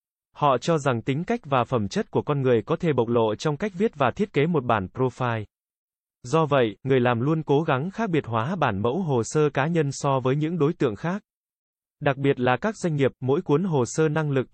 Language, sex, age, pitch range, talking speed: Vietnamese, male, 20-39, 125-160 Hz, 240 wpm